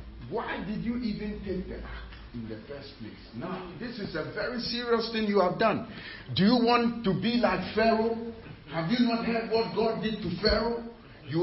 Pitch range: 185-235 Hz